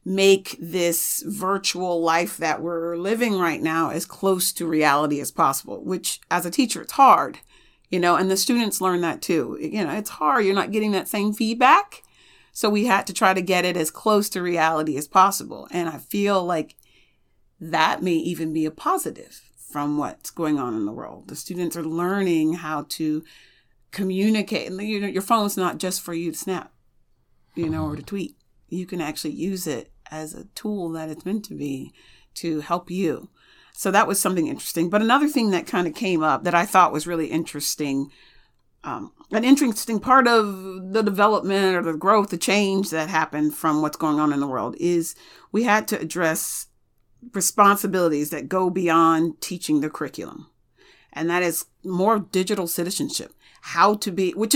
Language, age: English, 40-59